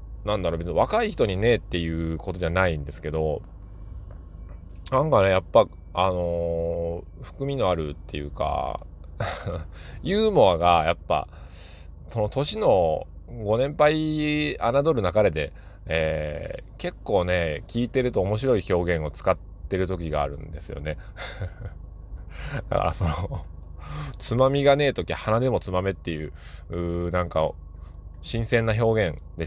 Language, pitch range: Japanese, 80-105 Hz